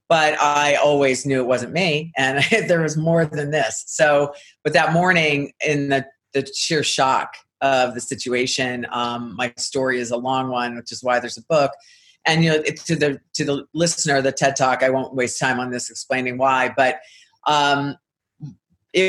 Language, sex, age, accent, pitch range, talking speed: English, female, 40-59, American, 125-145 Hz, 190 wpm